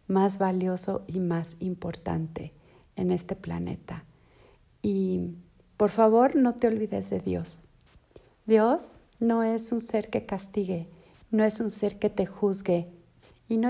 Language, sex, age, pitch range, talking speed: Spanish, female, 50-69, 175-210 Hz, 140 wpm